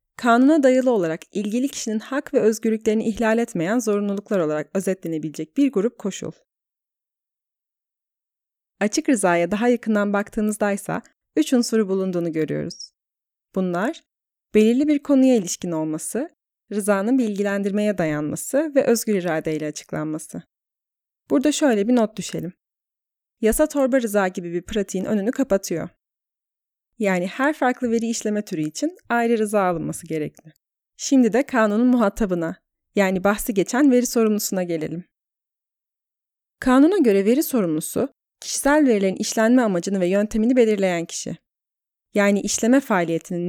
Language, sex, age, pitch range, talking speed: Turkish, female, 30-49, 180-245 Hz, 120 wpm